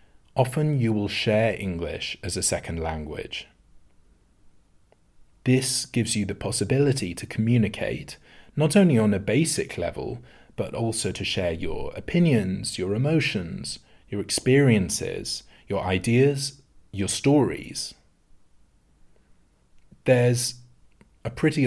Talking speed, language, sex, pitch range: 110 wpm, English, male, 90-115 Hz